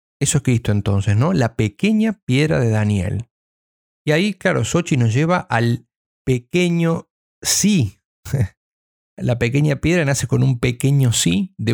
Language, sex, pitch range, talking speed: Spanish, male, 115-150 Hz, 145 wpm